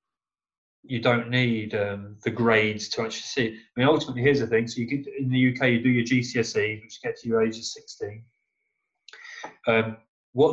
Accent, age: British, 30-49